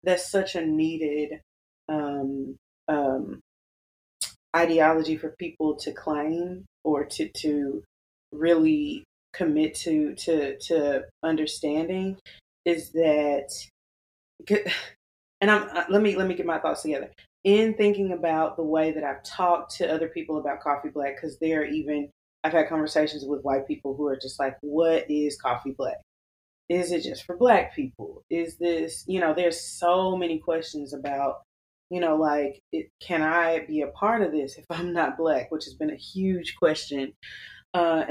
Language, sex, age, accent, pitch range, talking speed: English, female, 20-39, American, 150-195 Hz, 155 wpm